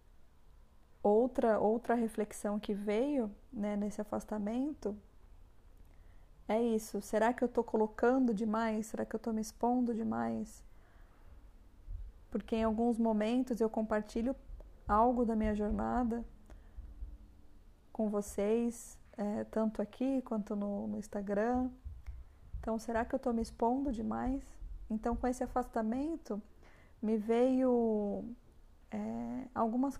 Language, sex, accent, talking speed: Portuguese, female, Brazilian, 110 wpm